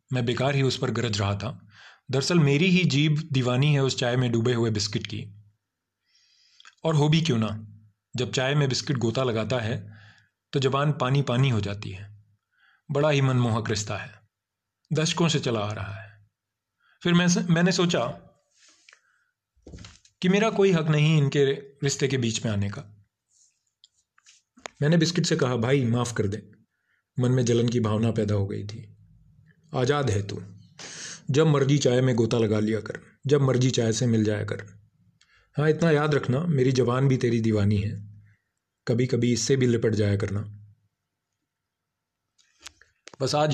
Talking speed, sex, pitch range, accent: 165 wpm, male, 105-140 Hz, native